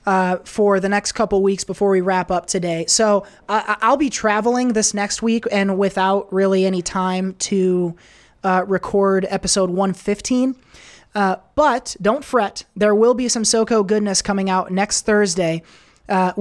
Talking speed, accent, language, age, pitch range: 160 wpm, American, English, 20-39, 190-220 Hz